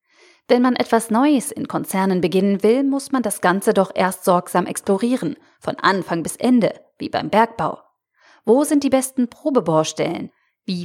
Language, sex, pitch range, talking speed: German, female, 180-245 Hz, 160 wpm